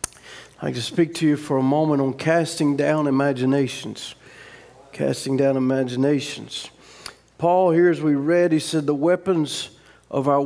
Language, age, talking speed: English, 50-69, 150 wpm